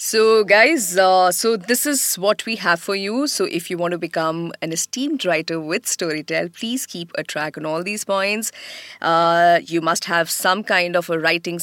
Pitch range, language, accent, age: 165-205 Hz, Hindi, native, 20-39